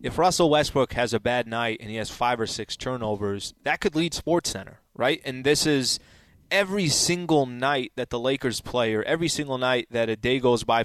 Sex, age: male, 20-39